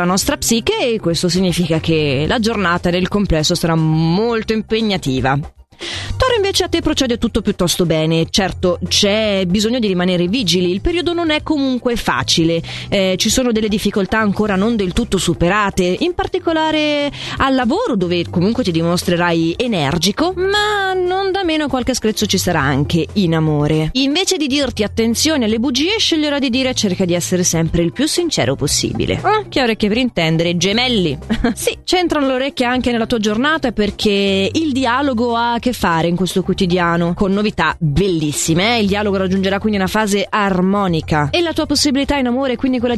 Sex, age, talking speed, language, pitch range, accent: female, 20-39, 170 wpm, Italian, 180-265 Hz, native